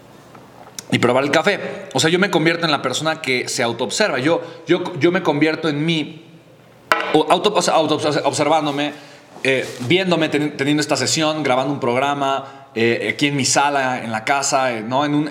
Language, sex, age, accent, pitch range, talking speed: Spanish, male, 40-59, Mexican, 130-165 Hz, 175 wpm